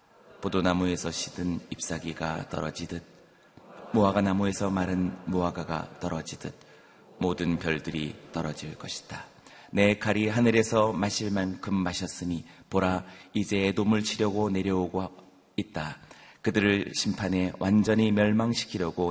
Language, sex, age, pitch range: Korean, male, 30-49, 85-100 Hz